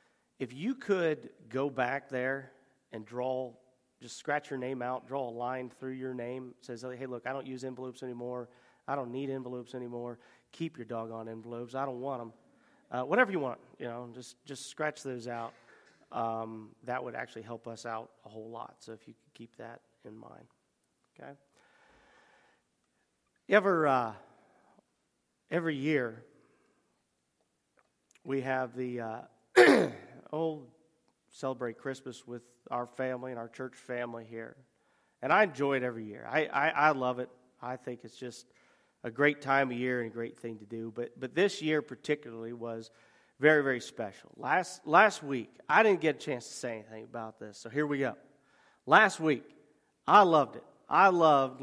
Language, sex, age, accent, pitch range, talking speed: English, male, 40-59, American, 120-140 Hz, 175 wpm